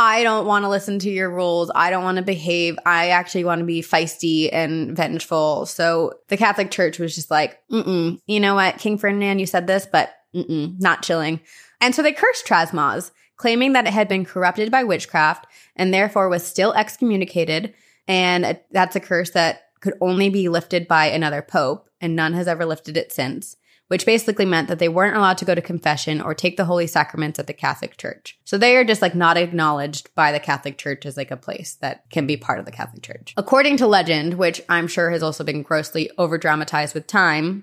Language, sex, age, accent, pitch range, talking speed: English, female, 20-39, American, 160-195 Hz, 215 wpm